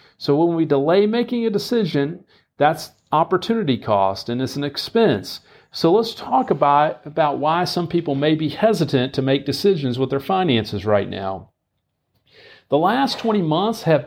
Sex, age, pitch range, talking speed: male, 50-69, 140-195 Hz, 160 wpm